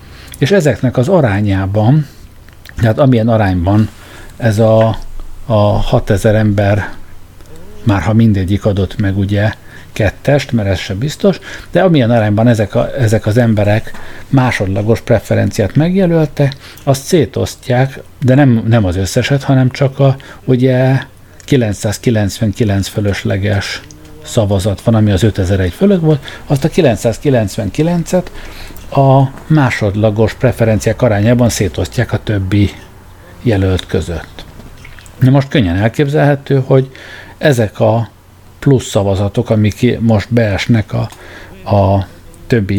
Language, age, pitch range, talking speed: Hungarian, 50-69, 100-130 Hz, 115 wpm